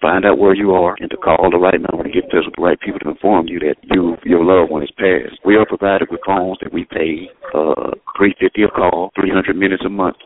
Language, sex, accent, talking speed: English, male, American, 250 wpm